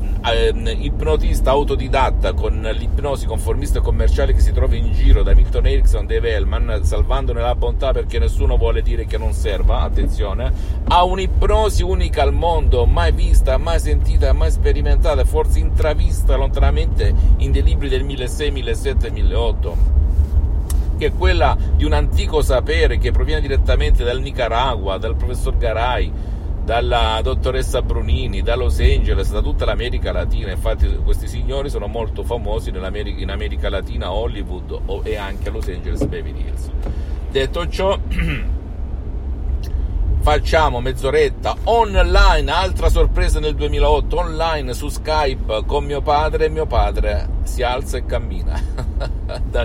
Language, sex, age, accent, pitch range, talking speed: Italian, male, 50-69, native, 70-80 Hz, 135 wpm